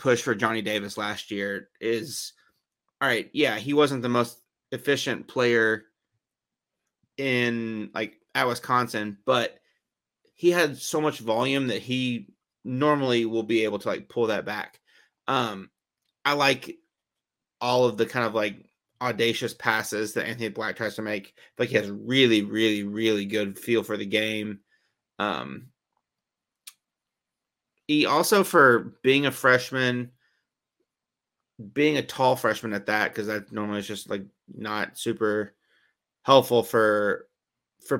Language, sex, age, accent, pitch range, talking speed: English, male, 30-49, American, 110-130 Hz, 140 wpm